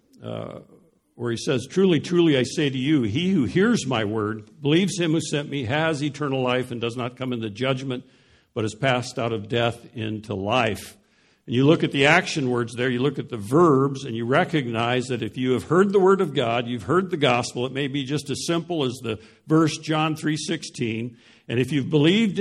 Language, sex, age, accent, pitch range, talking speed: English, male, 60-79, American, 120-155 Hz, 215 wpm